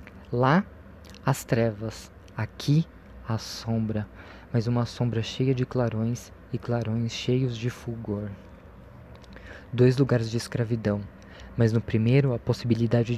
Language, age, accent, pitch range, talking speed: Portuguese, 20-39, Brazilian, 105-125 Hz, 120 wpm